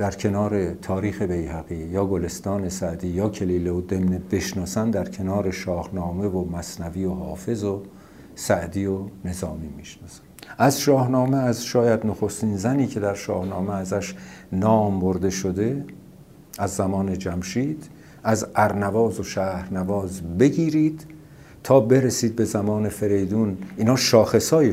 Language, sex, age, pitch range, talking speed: Persian, male, 50-69, 90-110 Hz, 125 wpm